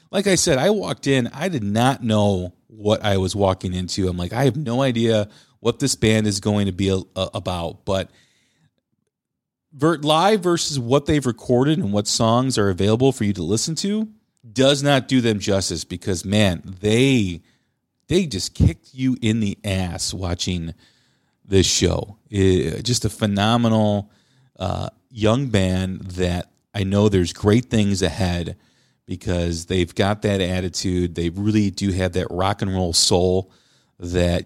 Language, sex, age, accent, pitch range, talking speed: English, male, 40-59, American, 95-130 Hz, 165 wpm